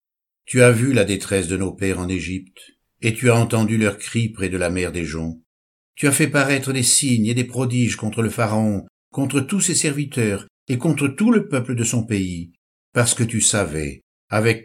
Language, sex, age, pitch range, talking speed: French, male, 60-79, 100-125 Hz, 210 wpm